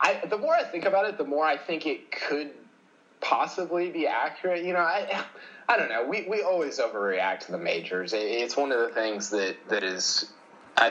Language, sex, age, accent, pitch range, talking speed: English, male, 20-39, American, 110-160 Hz, 210 wpm